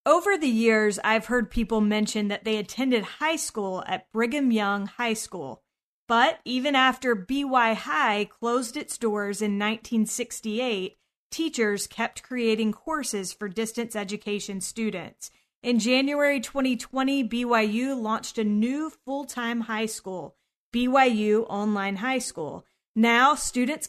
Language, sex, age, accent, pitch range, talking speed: English, female, 30-49, American, 210-255 Hz, 130 wpm